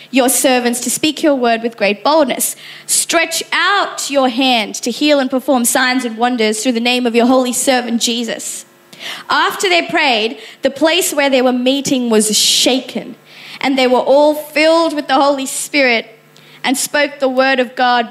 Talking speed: 180 wpm